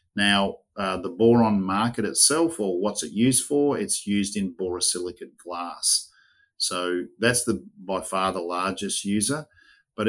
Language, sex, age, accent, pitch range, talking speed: English, male, 50-69, Australian, 95-120 Hz, 150 wpm